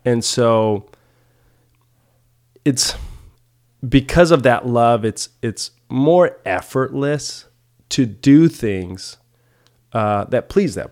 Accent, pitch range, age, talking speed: American, 105-125 Hz, 30-49, 100 wpm